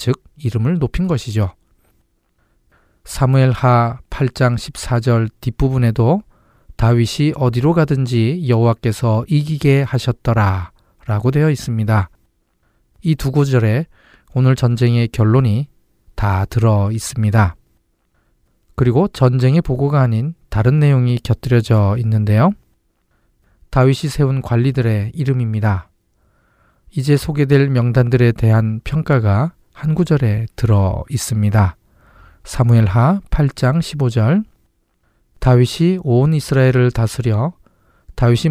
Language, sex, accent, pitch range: Korean, male, native, 110-140 Hz